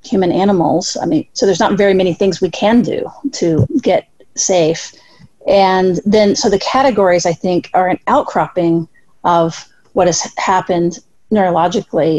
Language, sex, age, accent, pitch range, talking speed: English, female, 40-59, American, 175-220 Hz, 155 wpm